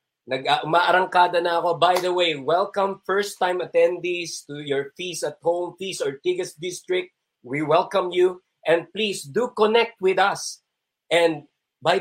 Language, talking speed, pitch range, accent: Filipino, 140 wpm, 145-195 Hz, native